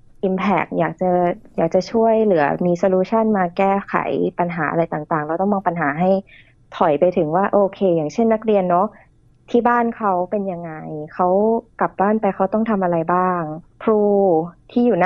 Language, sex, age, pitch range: Thai, female, 20-39, 170-210 Hz